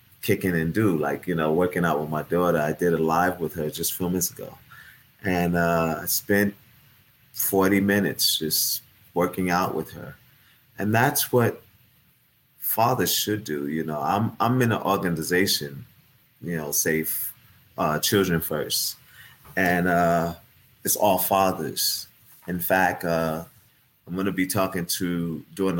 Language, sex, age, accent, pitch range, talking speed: English, male, 30-49, American, 85-100 Hz, 155 wpm